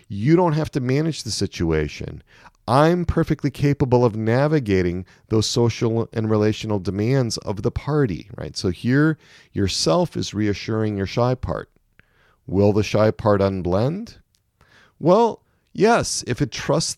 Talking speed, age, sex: 140 wpm, 40-59, male